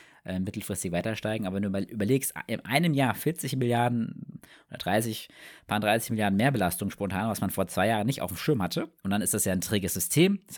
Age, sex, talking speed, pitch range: 20-39, male, 215 wpm, 95-120 Hz